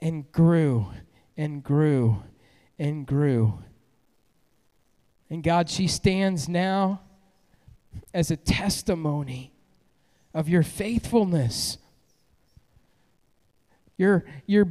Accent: American